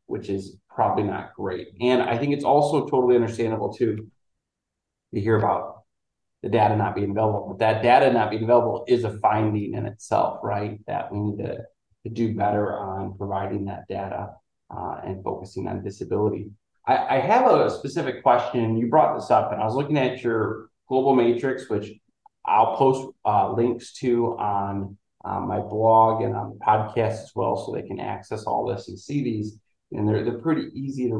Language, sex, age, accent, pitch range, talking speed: English, male, 30-49, American, 110-130 Hz, 185 wpm